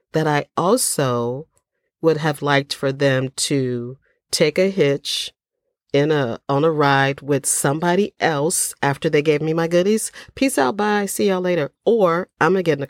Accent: American